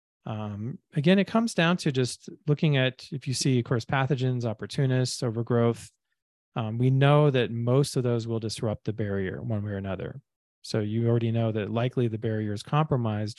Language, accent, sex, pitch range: English, American, male, 110-135 Hz